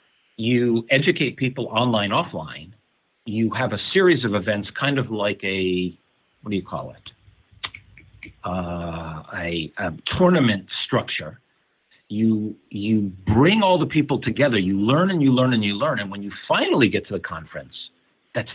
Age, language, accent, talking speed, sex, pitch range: 50-69, English, American, 160 wpm, male, 100-135 Hz